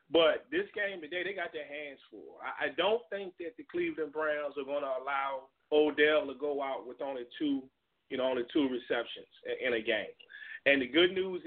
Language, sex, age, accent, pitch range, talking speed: English, male, 30-49, American, 145-200 Hz, 210 wpm